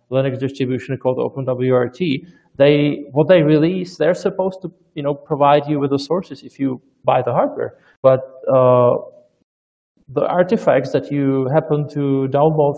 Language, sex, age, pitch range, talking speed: English, male, 30-49, 130-145 Hz, 150 wpm